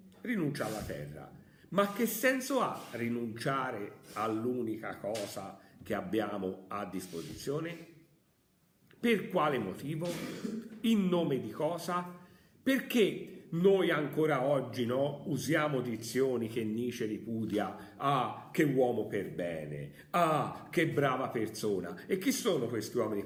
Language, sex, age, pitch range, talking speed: Italian, male, 50-69, 115-175 Hz, 120 wpm